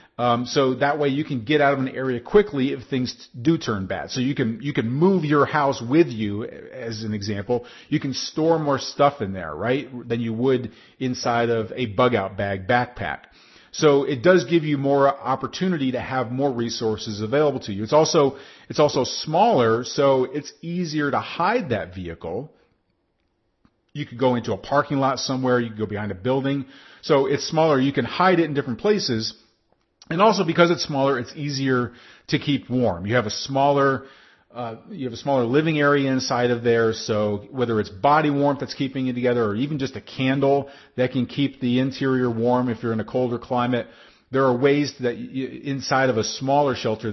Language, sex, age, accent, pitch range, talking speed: English, male, 40-59, American, 120-145 Hz, 200 wpm